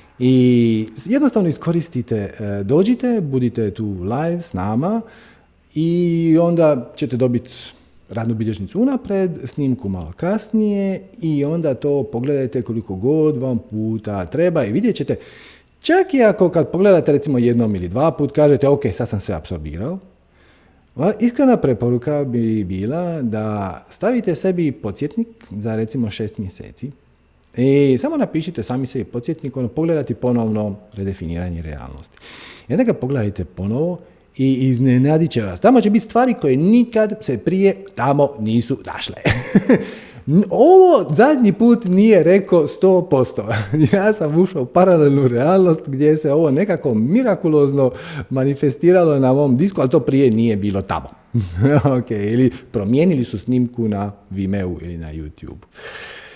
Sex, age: male, 40-59